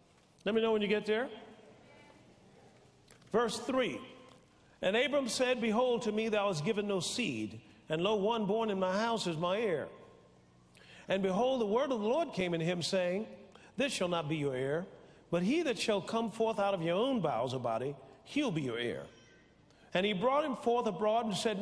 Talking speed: 200 wpm